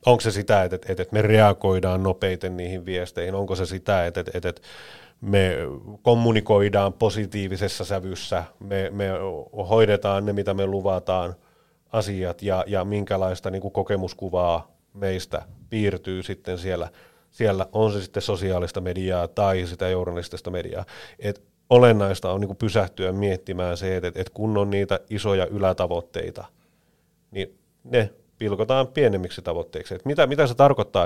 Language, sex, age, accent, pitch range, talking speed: Finnish, male, 30-49, native, 95-110 Hz, 120 wpm